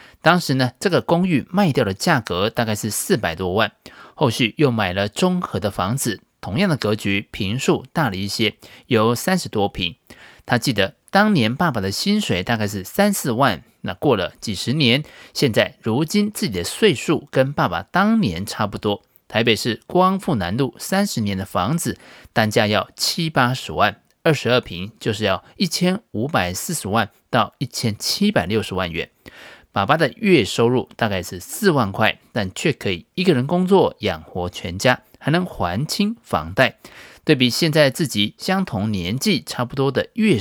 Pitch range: 105-170 Hz